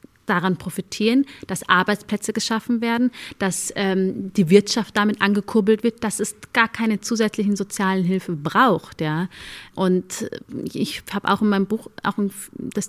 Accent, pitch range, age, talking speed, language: German, 185-210 Hz, 30-49, 145 wpm, German